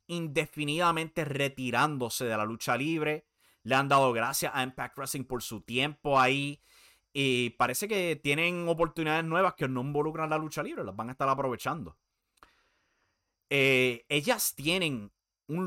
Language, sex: English, male